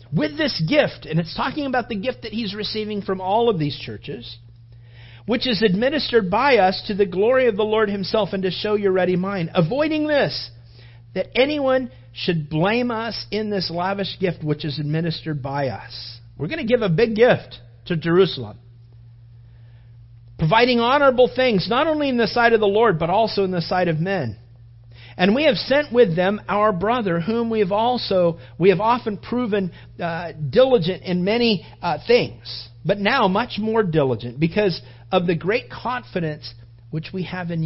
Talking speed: 180 wpm